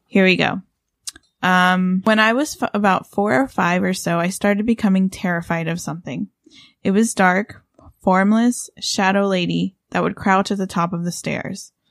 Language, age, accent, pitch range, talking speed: English, 20-39, American, 180-215 Hz, 170 wpm